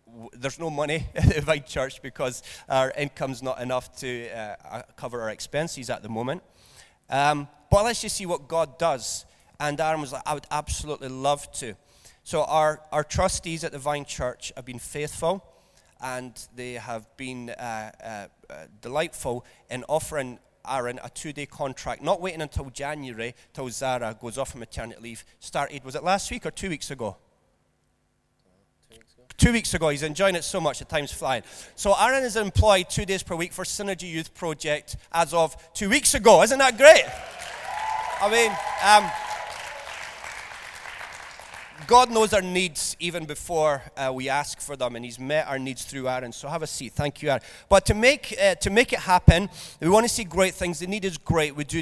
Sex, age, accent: male, 30-49, British